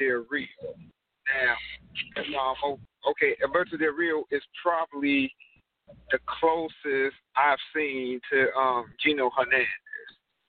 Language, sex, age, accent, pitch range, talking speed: English, male, 40-59, American, 130-170 Hz, 105 wpm